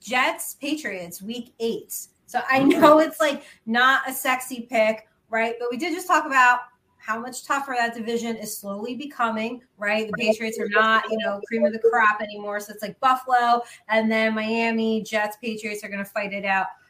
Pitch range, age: 215-265 Hz, 20-39